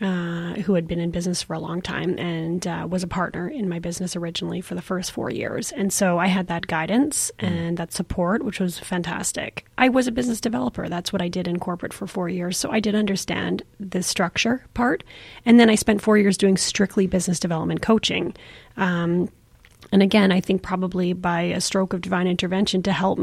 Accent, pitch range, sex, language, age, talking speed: American, 175-205 Hz, female, English, 30-49, 210 wpm